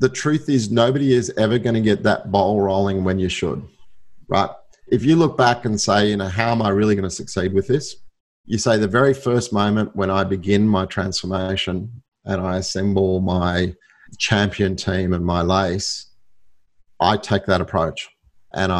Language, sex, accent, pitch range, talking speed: English, male, Australian, 95-110 Hz, 185 wpm